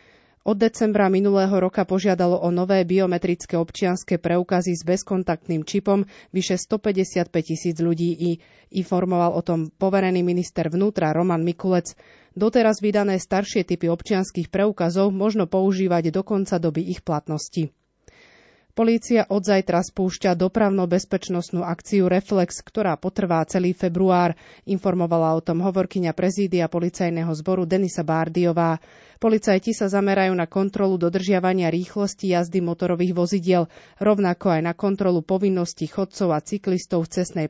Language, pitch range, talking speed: Slovak, 170-200 Hz, 125 wpm